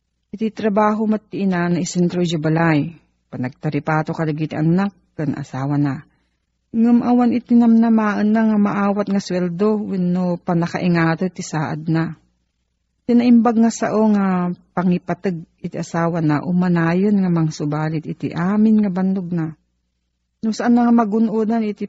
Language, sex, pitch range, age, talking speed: Filipino, female, 160-210 Hz, 40-59, 135 wpm